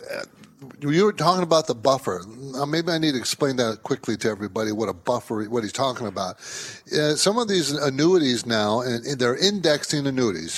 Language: English